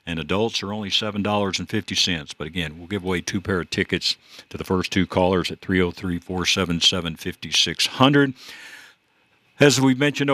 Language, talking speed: English, 140 wpm